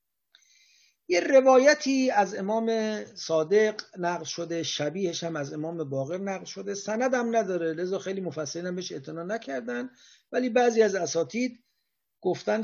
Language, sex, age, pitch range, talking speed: English, male, 50-69, 160-220 Hz, 135 wpm